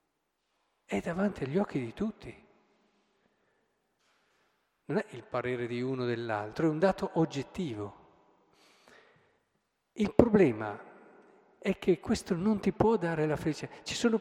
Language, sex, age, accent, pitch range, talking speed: Italian, male, 50-69, native, 125-195 Hz, 130 wpm